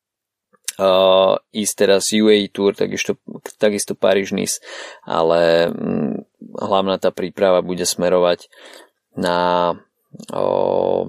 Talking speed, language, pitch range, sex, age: 90 wpm, Slovak, 90-110 Hz, male, 20-39